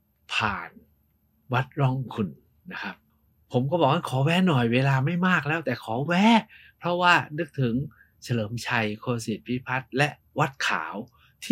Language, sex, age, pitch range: Thai, male, 60-79, 125-170 Hz